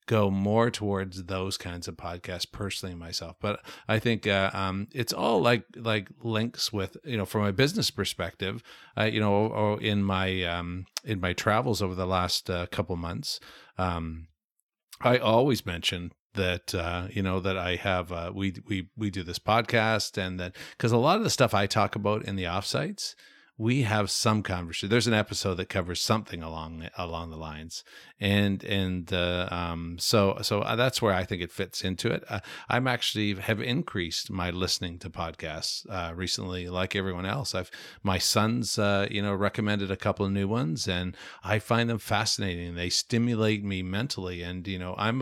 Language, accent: English, American